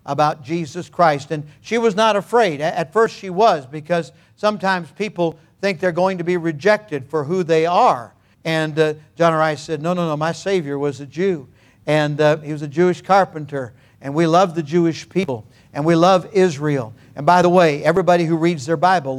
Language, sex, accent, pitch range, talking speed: English, male, American, 145-185 Hz, 200 wpm